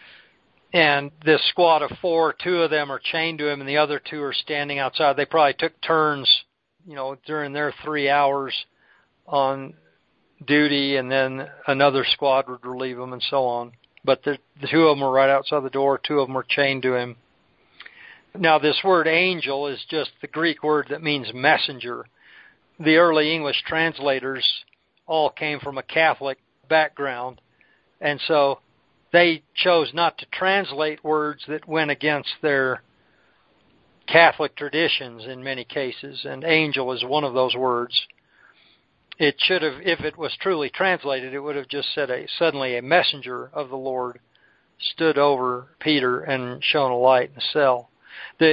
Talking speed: 170 wpm